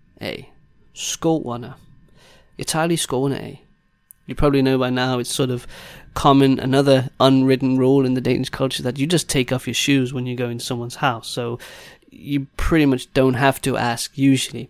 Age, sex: 20-39, male